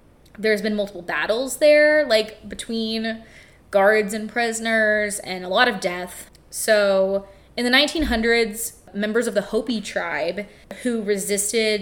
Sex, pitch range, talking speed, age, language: female, 195-230 Hz, 130 wpm, 20-39, English